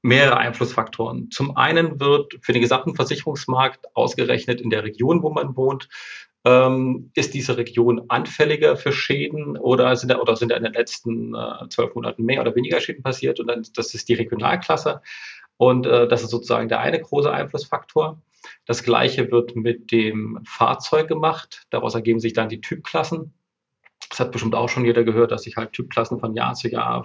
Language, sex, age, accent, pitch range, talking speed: German, male, 30-49, German, 115-145 Hz, 185 wpm